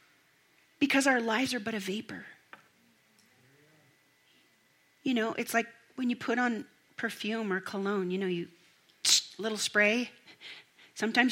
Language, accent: English, American